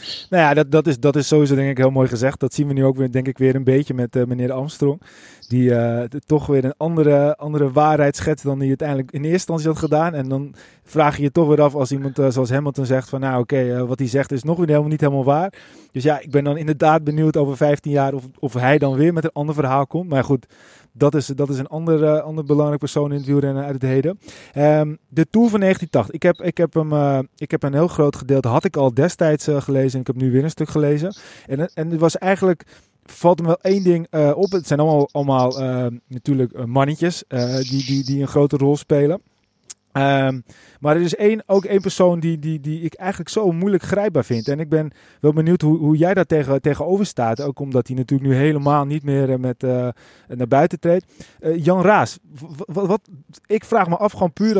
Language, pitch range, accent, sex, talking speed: Dutch, 135-160 Hz, Dutch, male, 230 wpm